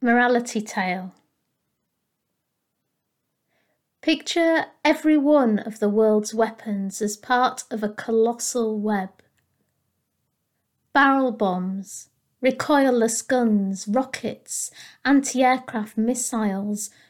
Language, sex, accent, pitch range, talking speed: English, female, British, 205-255 Hz, 75 wpm